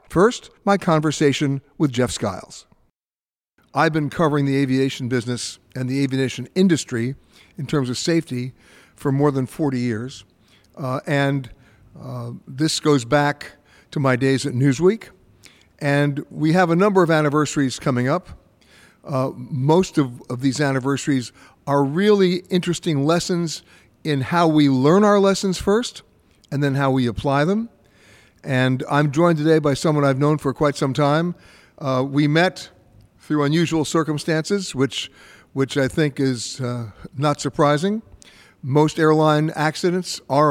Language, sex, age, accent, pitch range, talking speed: English, male, 60-79, American, 130-160 Hz, 145 wpm